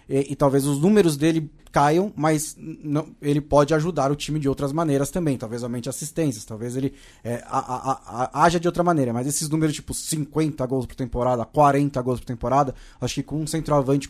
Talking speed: 210 wpm